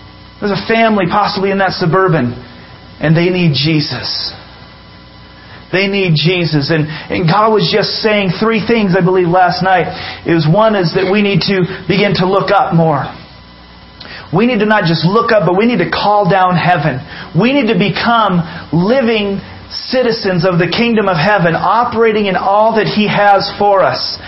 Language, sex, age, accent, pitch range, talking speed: English, male, 40-59, American, 165-210 Hz, 180 wpm